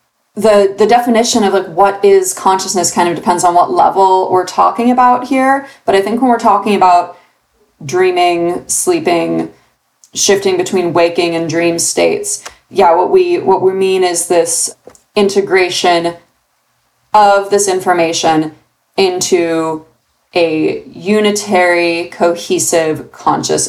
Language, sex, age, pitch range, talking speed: English, female, 20-39, 170-205 Hz, 125 wpm